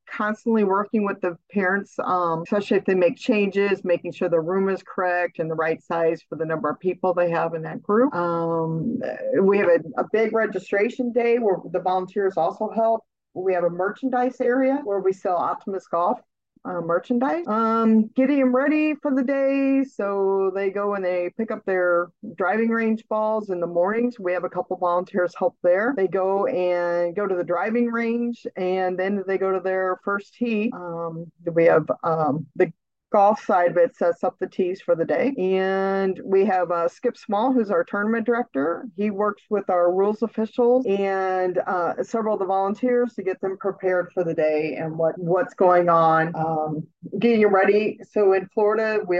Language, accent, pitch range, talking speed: English, American, 175-220 Hz, 190 wpm